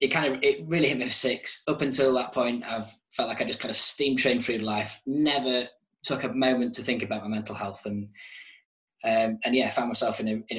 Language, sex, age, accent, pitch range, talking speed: English, male, 20-39, British, 115-140 Hz, 250 wpm